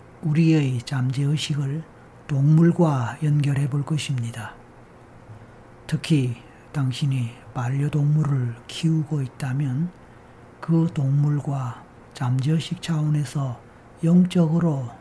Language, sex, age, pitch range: Korean, male, 40-59, 120-155 Hz